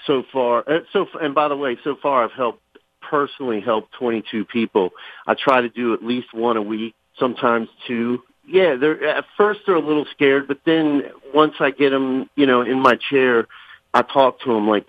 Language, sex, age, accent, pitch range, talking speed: English, male, 50-69, American, 115-130 Hz, 215 wpm